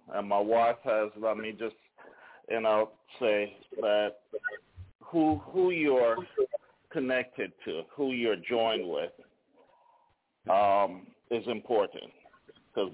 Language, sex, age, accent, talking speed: English, male, 40-59, American, 110 wpm